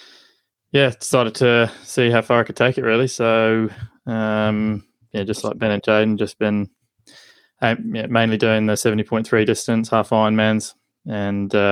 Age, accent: 20-39, Australian